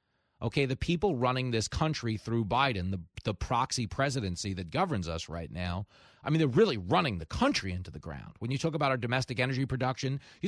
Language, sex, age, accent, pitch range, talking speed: English, male, 40-59, American, 125-160 Hz, 205 wpm